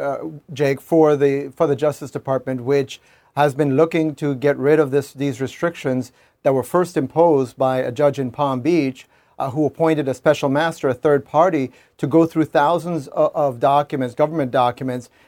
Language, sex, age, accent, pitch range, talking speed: English, male, 40-59, American, 140-160 Hz, 185 wpm